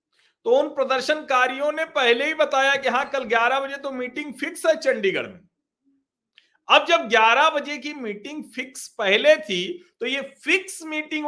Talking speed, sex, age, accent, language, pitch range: 165 wpm, male, 50-69, native, Hindi, 225-300 Hz